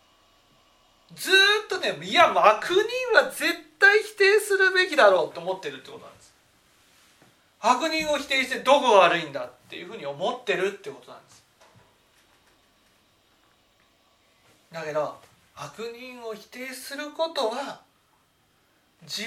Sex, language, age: male, Japanese, 40-59